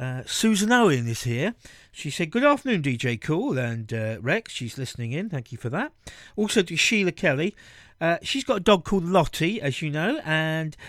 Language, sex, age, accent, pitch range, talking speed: English, male, 50-69, British, 125-190 Hz, 200 wpm